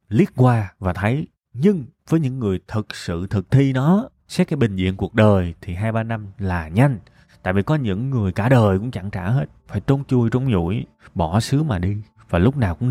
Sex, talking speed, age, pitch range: male, 230 wpm, 20-39, 95-125 Hz